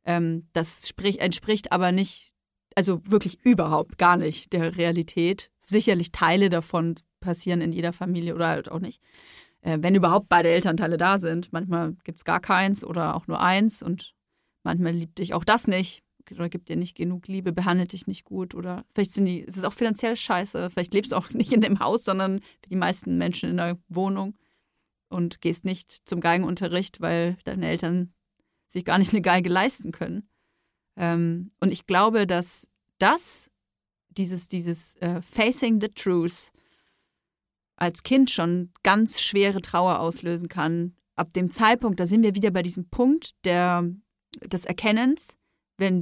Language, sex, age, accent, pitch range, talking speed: German, female, 30-49, German, 170-205 Hz, 165 wpm